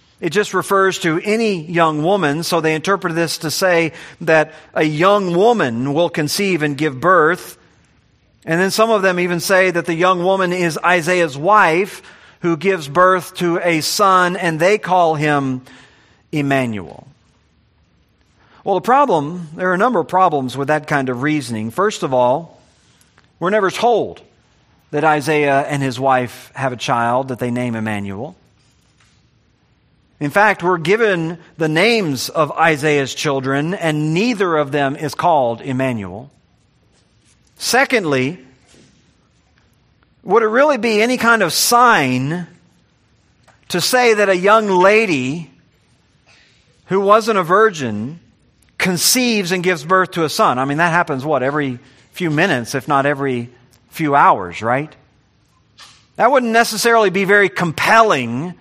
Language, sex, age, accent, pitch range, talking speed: English, male, 40-59, American, 135-190 Hz, 145 wpm